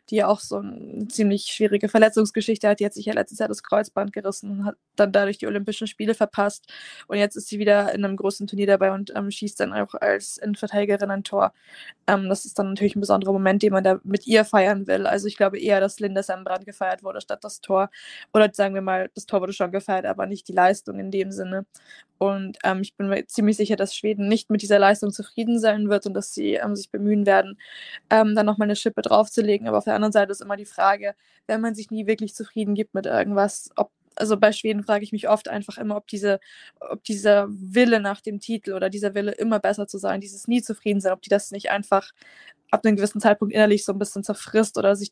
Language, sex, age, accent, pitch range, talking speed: German, female, 20-39, German, 195-215 Hz, 235 wpm